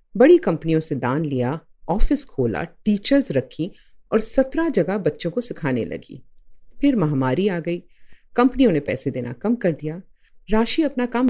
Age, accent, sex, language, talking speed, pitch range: 50-69, native, female, Hindi, 160 wpm, 150-235 Hz